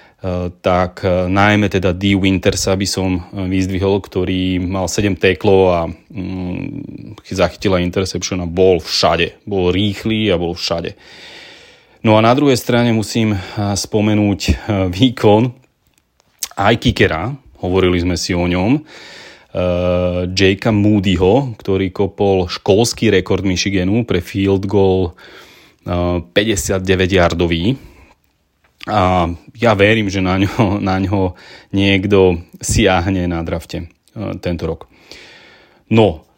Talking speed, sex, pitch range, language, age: 105 wpm, male, 90-105 Hz, Slovak, 30-49